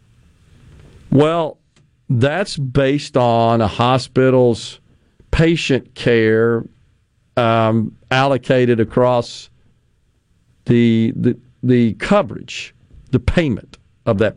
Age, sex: 50-69, male